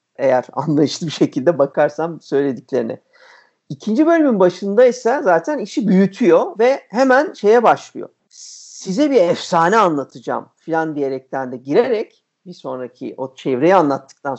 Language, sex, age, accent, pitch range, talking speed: Turkish, male, 50-69, native, 155-265 Hz, 125 wpm